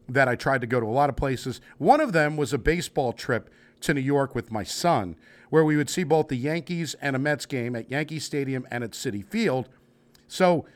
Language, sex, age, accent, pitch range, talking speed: English, male, 50-69, American, 120-160 Hz, 235 wpm